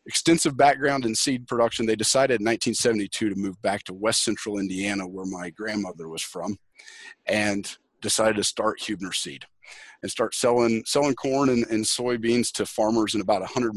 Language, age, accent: English, 40-59, American